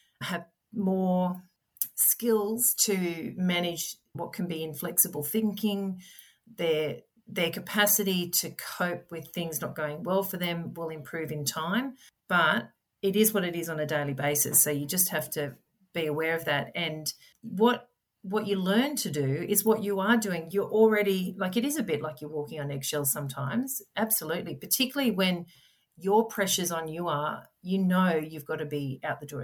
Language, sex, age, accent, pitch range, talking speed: English, female, 40-59, Australian, 160-205 Hz, 175 wpm